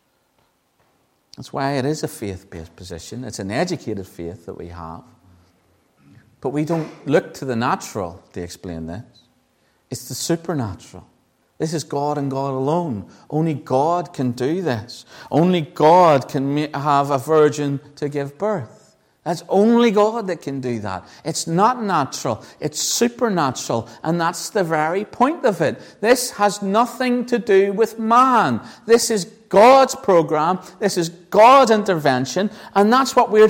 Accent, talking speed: British, 150 wpm